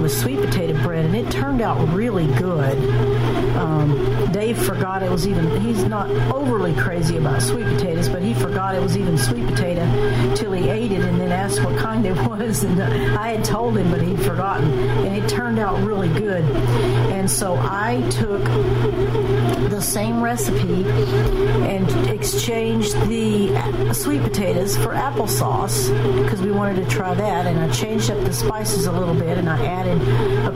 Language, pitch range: English, 120-140 Hz